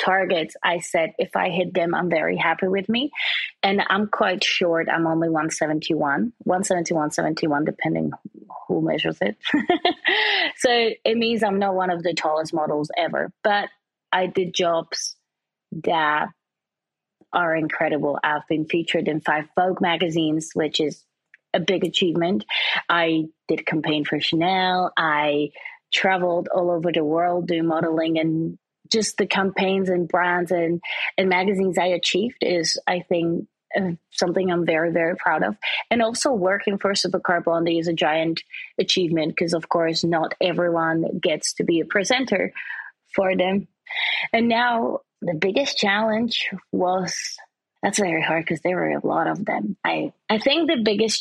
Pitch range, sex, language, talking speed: 165-195 Hz, female, English, 155 wpm